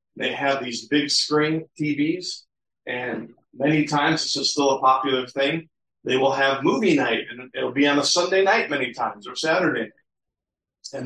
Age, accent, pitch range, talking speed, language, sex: 40-59, American, 140-170 Hz, 180 wpm, English, male